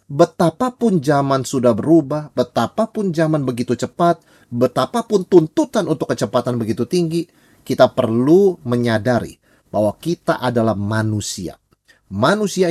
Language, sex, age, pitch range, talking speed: Indonesian, male, 30-49, 110-165 Hz, 105 wpm